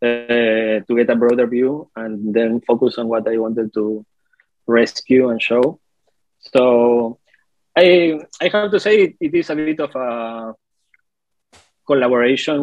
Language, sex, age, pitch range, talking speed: English, male, 20-39, 110-130 Hz, 145 wpm